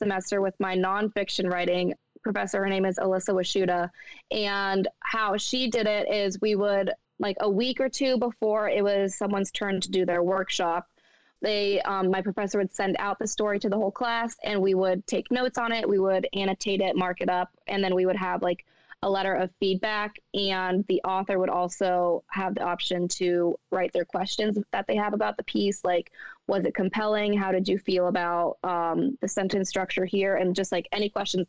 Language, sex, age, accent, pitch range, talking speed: English, female, 20-39, American, 185-210 Hz, 205 wpm